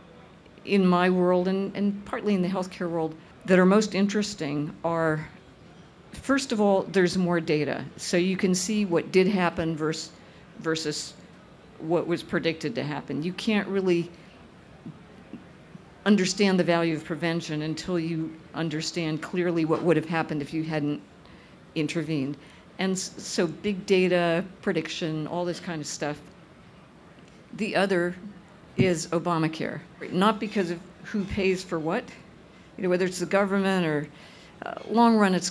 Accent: American